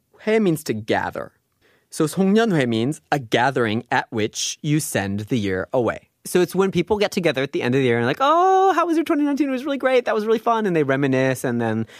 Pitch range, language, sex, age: 130-195 Hz, Korean, male, 30-49